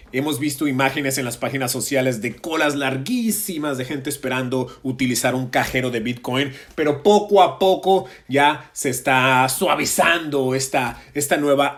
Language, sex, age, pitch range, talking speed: Spanish, male, 30-49, 130-165 Hz, 150 wpm